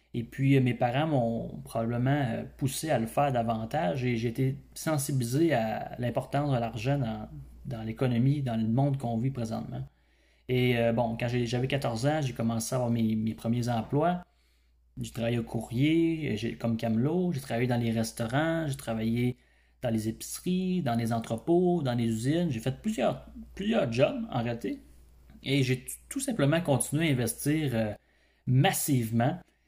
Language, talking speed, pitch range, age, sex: French, 165 wpm, 115-135 Hz, 30-49, male